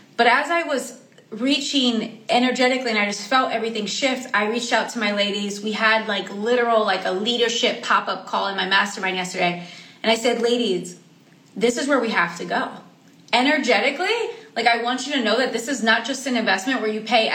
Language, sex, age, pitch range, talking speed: English, female, 20-39, 220-275 Hz, 205 wpm